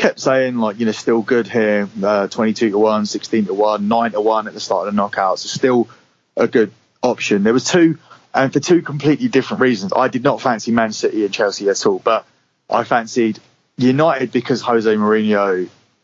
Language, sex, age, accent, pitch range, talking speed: English, male, 30-49, British, 105-130 Hz, 200 wpm